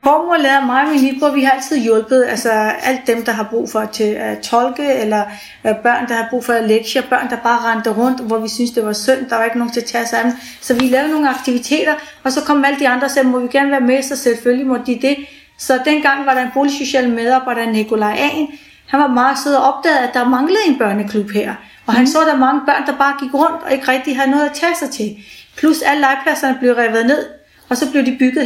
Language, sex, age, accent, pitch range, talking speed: Danish, female, 30-49, native, 235-275 Hz, 255 wpm